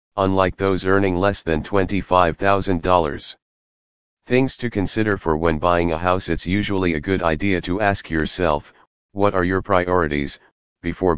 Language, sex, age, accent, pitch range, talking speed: English, male, 40-59, American, 85-100 Hz, 145 wpm